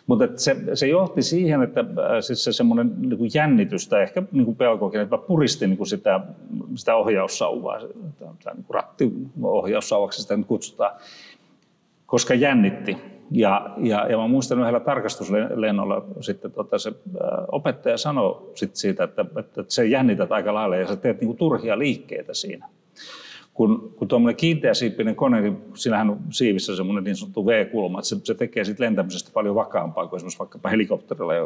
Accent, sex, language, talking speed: native, male, Finnish, 150 wpm